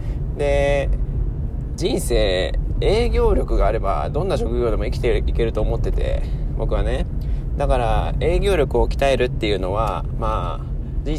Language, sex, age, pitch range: Japanese, male, 20-39, 95-135 Hz